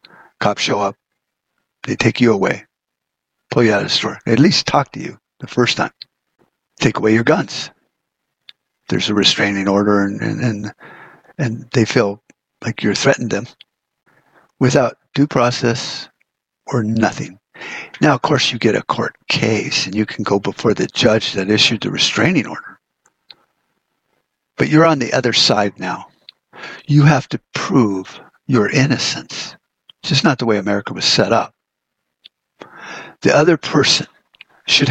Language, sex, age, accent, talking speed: English, male, 60-79, American, 155 wpm